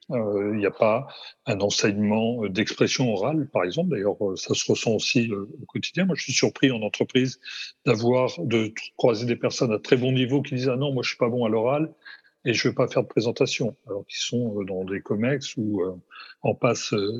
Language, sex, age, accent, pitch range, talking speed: French, male, 40-59, French, 110-140 Hz, 215 wpm